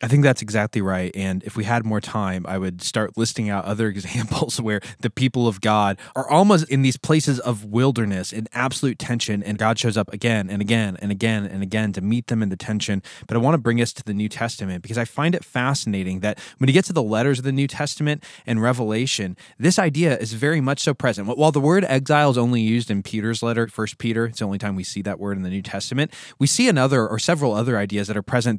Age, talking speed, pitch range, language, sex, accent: 20-39, 245 wpm, 110-150 Hz, English, male, American